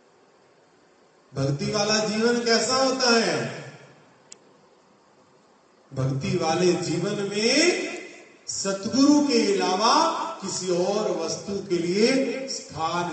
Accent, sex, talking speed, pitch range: native, male, 85 wpm, 160-260 Hz